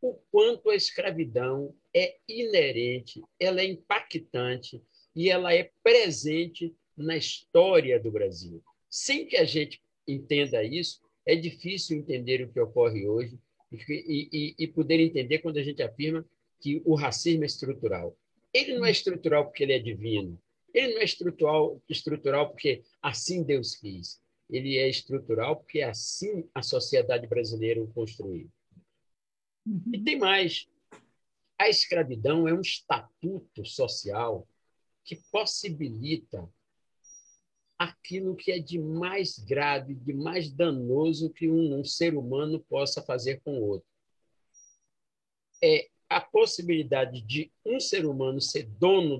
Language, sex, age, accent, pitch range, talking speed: English, male, 50-69, Brazilian, 130-185 Hz, 135 wpm